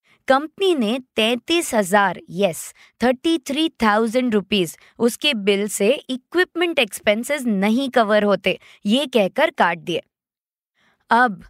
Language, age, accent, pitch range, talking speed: Hindi, 20-39, native, 210-295 Hz, 100 wpm